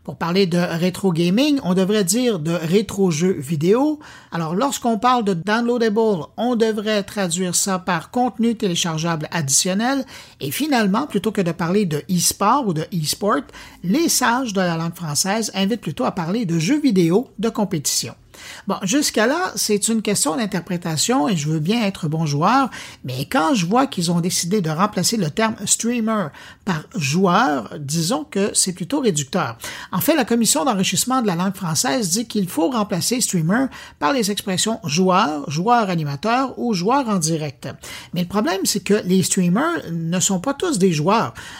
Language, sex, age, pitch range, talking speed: French, male, 50-69, 175-225 Hz, 175 wpm